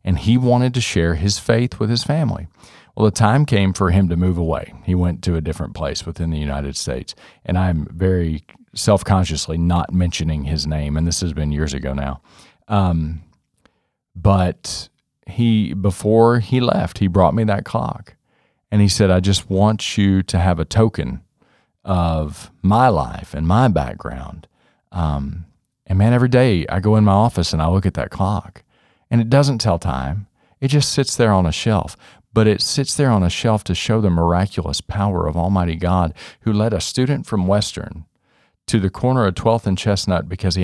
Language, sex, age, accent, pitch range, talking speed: English, male, 40-59, American, 85-115 Hz, 190 wpm